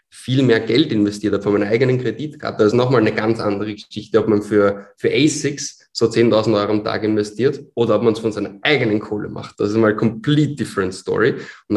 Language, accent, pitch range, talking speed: German, German, 110-130 Hz, 220 wpm